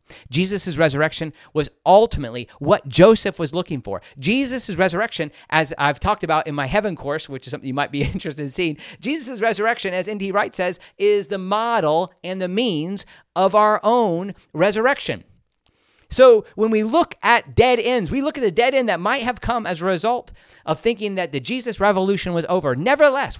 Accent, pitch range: American, 160-225 Hz